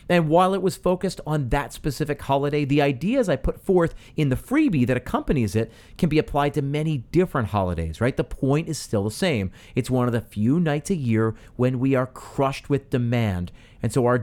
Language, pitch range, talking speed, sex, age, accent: English, 110-155 Hz, 215 wpm, male, 40-59, American